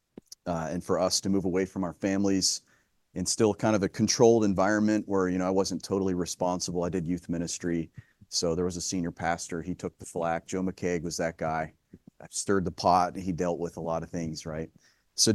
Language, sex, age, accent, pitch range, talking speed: English, male, 30-49, American, 90-110 Hz, 225 wpm